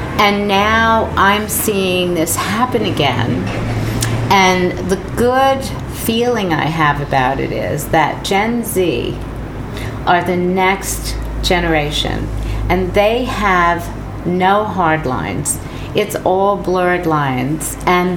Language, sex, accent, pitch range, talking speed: English, female, American, 150-190 Hz, 110 wpm